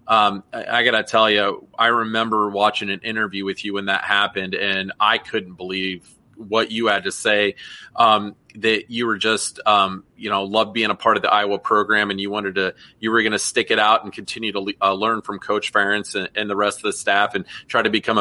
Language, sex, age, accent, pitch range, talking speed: English, male, 30-49, American, 100-115 Hz, 230 wpm